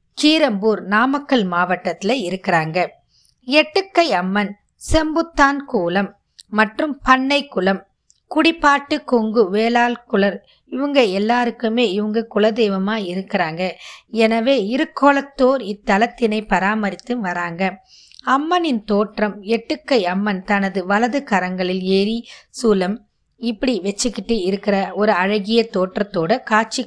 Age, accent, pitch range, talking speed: 20-39, native, 195-255 Hz, 95 wpm